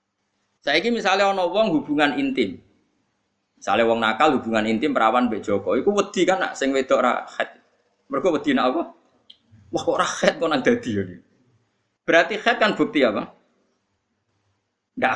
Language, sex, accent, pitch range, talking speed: Indonesian, male, native, 110-185 Hz, 160 wpm